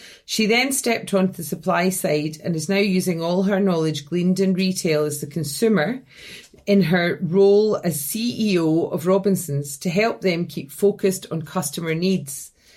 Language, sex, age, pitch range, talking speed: English, female, 30-49, 165-200 Hz, 165 wpm